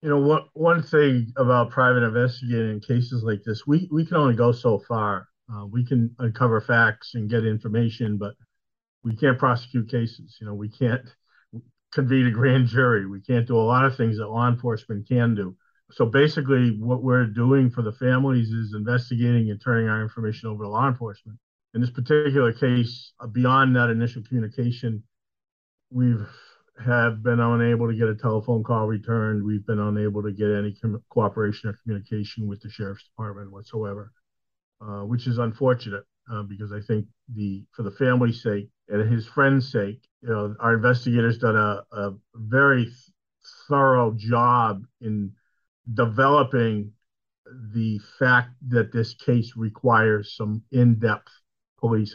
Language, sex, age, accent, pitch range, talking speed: English, male, 50-69, American, 110-125 Hz, 160 wpm